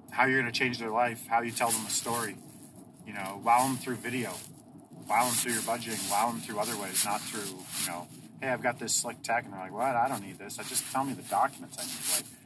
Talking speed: 270 wpm